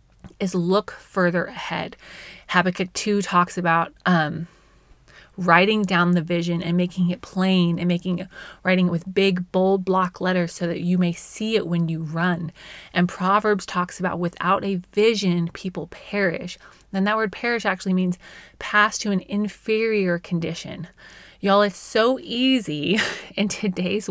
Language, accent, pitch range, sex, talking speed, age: English, American, 175-205 Hz, female, 150 wpm, 20-39